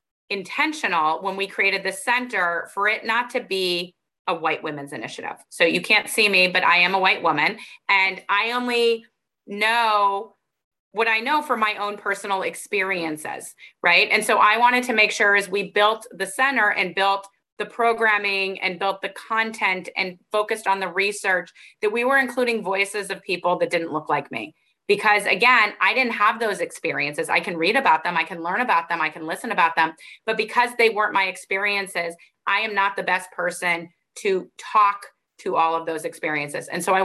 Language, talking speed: English, 195 wpm